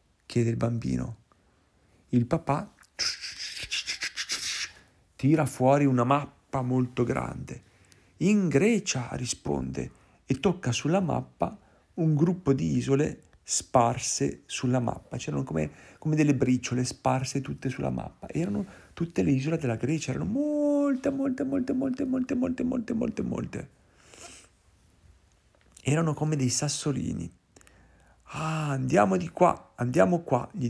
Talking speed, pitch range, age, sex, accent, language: 115 wpm, 100-155 Hz, 50-69, male, native, Italian